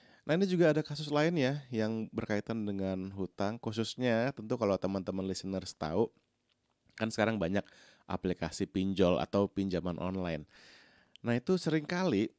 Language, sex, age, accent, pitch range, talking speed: Indonesian, male, 20-39, native, 100-130 Hz, 135 wpm